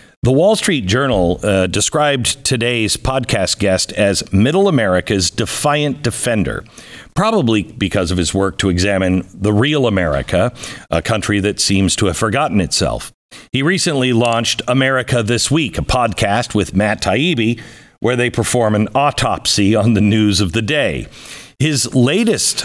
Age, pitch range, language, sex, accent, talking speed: 50-69, 95-125 Hz, English, male, American, 150 wpm